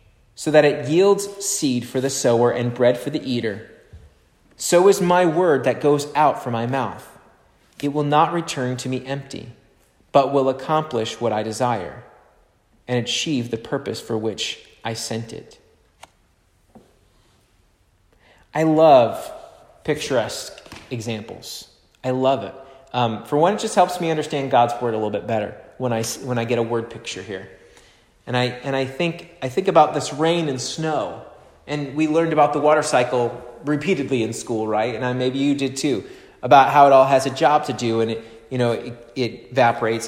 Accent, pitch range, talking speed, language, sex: American, 115-155 Hz, 180 wpm, English, male